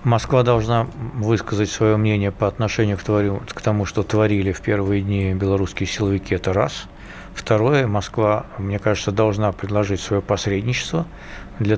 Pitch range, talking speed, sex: 100-120 Hz, 140 wpm, male